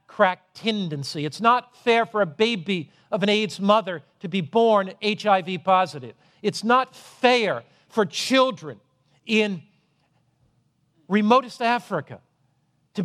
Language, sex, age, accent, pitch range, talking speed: English, male, 50-69, American, 180-230 Hz, 120 wpm